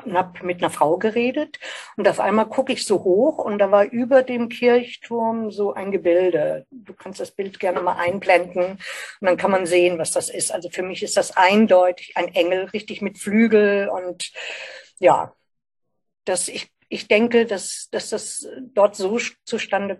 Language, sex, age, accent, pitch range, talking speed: German, female, 60-79, German, 180-225 Hz, 175 wpm